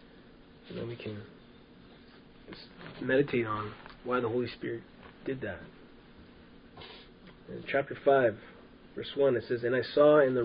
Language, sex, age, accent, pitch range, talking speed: English, male, 20-39, American, 115-150 Hz, 140 wpm